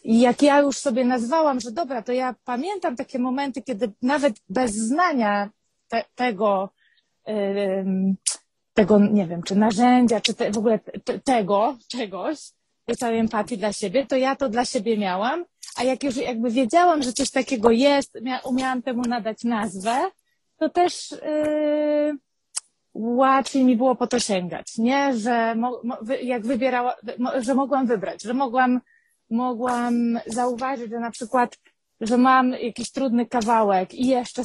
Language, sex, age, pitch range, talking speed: Polish, female, 30-49, 220-265 Hz, 155 wpm